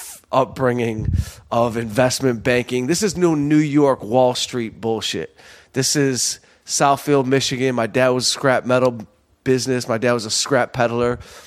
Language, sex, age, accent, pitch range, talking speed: English, male, 30-49, American, 115-140 Hz, 155 wpm